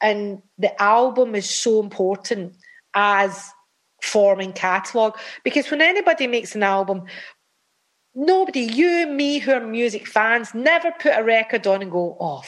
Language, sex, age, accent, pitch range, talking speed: English, female, 40-59, British, 195-255 Hz, 150 wpm